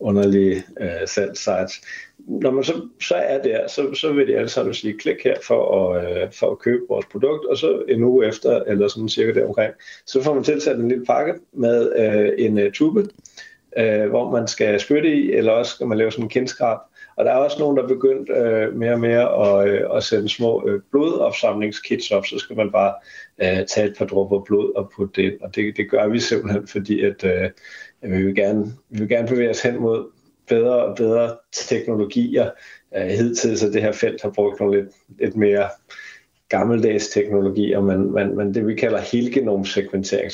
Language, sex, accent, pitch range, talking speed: Danish, male, native, 100-135 Hz, 200 wpm